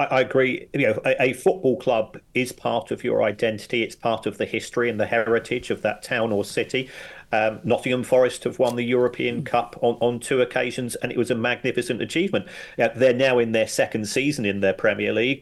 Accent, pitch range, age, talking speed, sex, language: British, 120-135 Hz, 40-59, 215 wpm, male, English